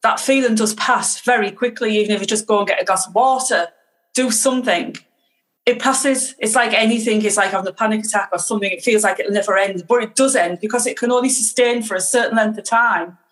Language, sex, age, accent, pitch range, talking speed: English, female, 30-49, British, 190-250 Hz, 240 wpm